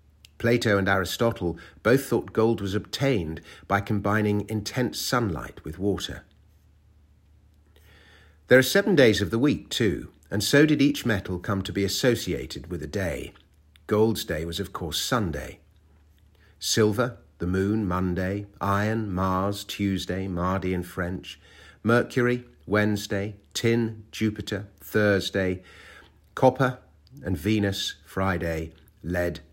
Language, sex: English, male